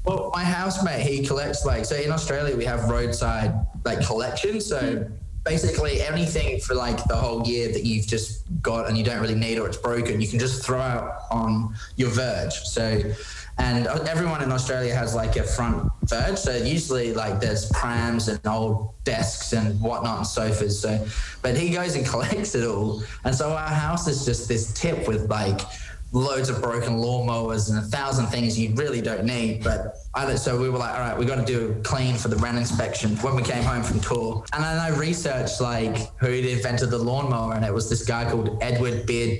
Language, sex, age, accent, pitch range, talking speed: Dutch, male, 20-39, Australian, 110-135 Hz, 205 wpm